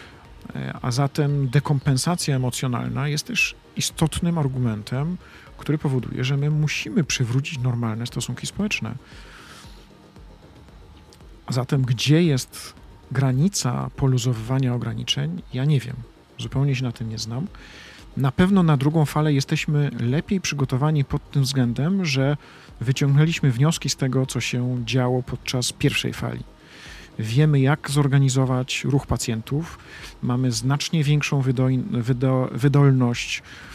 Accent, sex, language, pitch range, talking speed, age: native, male, Polish, 125-145 Hz, 115 wpm, 40-59